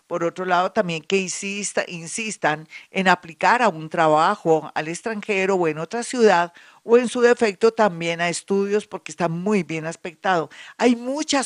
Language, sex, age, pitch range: Spanish, female, 50-69, 175-225 Hz